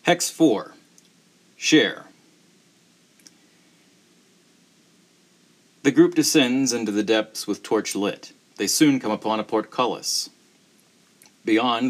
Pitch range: 110-150 Hz